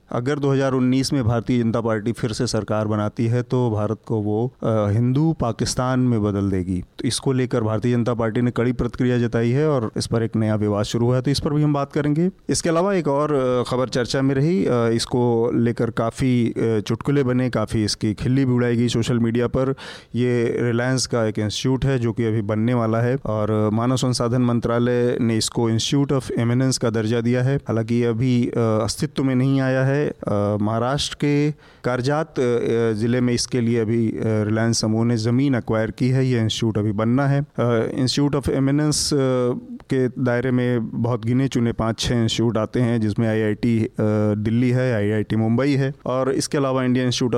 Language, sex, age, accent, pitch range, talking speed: Hindi, male, 30-49, native, 115-130 Hz, 155 wpm